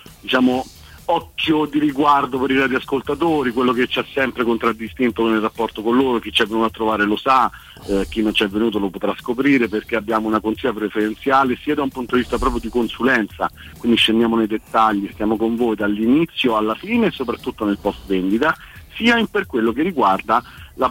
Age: 50-69